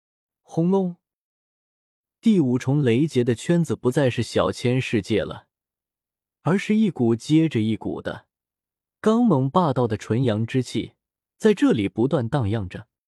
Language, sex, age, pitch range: Chinese, male, 20-39, 105-160 Hz